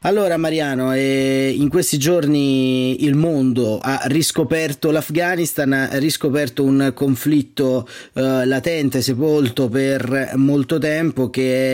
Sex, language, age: male, Italian, 30-49